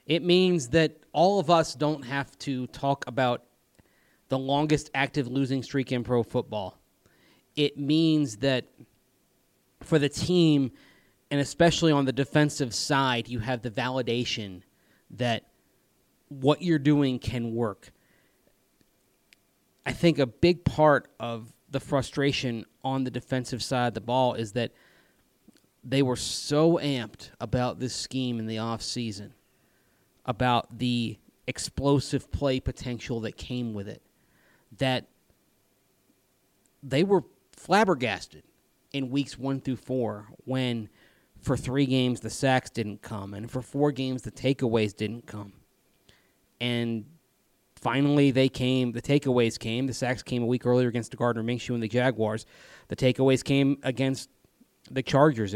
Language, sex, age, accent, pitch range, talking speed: English, male, 30-49, American, 115-140 Hz, 140 wpm